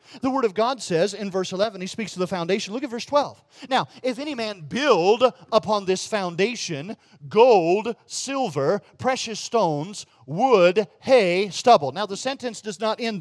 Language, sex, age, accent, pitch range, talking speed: English, male, 40-59, American, 180-255 Hz, 175 wpm